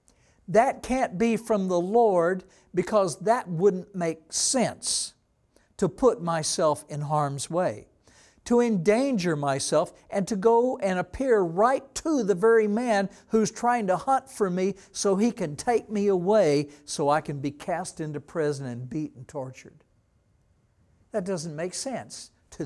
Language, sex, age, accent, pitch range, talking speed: English, male, 60-79, American, 135-215 Hz, 150 wpm